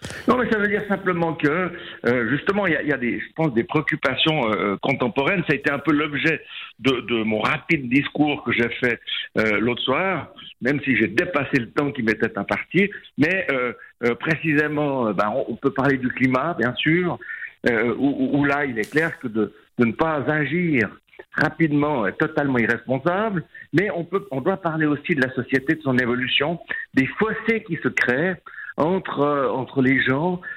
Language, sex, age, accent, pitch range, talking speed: French, male, 60-79, French, 125-165 Hz, 190 wpm